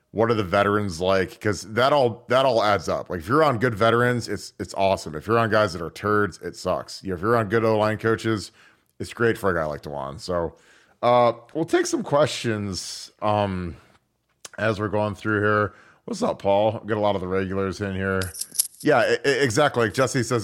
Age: 30-49